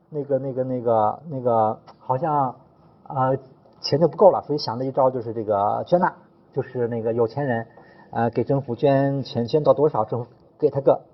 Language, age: Chinese, 50-69